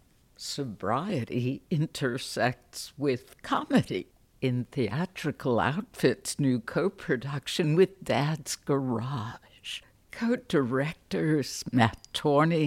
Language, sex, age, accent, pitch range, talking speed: English, female, 60-79, American, 125-170 Hz, 70 wpm